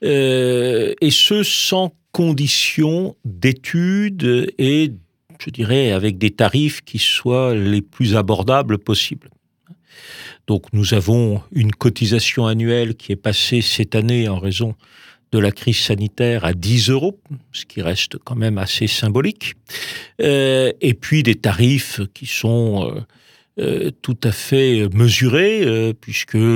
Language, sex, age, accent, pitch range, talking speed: French, male, 50-69, French, 110-130 Hz, 135 wpm